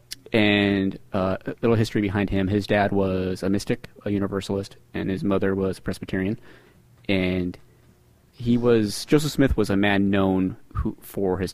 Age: 30-49